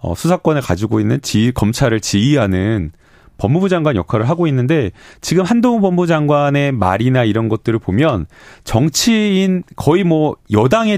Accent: native